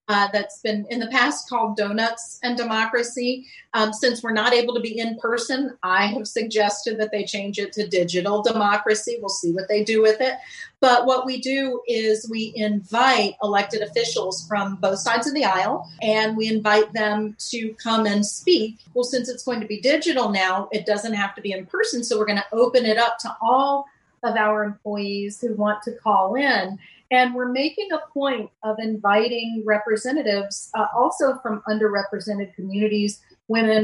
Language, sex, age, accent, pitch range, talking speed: English, female, 40-59, American, 205-240 Hz, 185 wpm